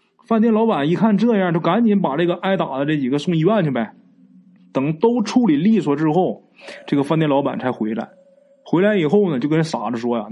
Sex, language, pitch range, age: male, Chinese, 145-225 Hz, 20-39